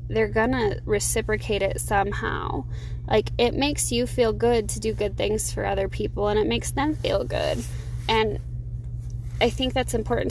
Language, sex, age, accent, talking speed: English, female, 20-39, American, 175 wpm